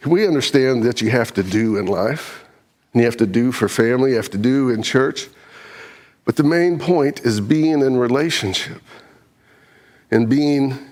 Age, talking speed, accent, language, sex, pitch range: 50-69, 175 wpm, American, English, male, 120-155 Hz